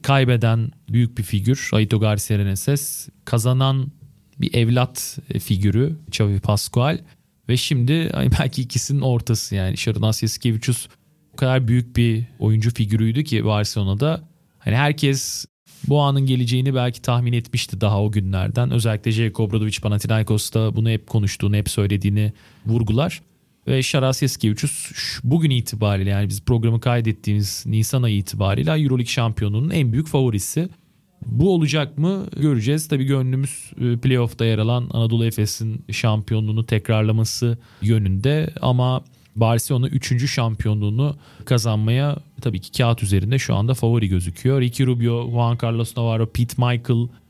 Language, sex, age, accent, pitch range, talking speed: Turkish, male, 40-59, native, 110-135 Hz, 130 wpm